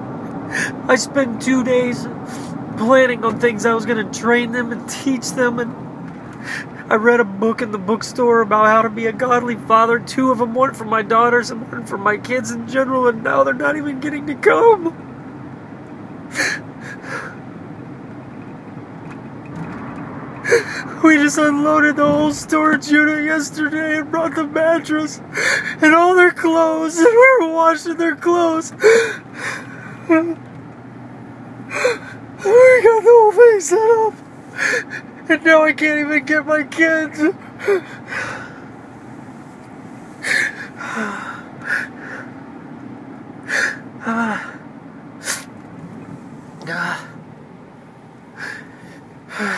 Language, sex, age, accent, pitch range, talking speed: English, male, 30-49, American, 240-325 Hz, 110 wpm